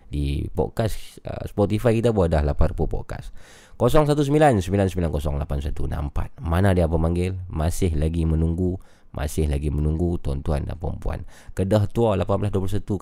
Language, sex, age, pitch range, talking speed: Malay, male, 20-39, 85-105 Hz, 115 wpm